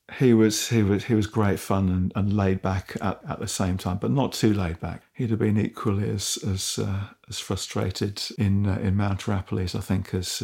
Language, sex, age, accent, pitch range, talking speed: English, male, 50-69, British, 100-115 Hz, 225 wpm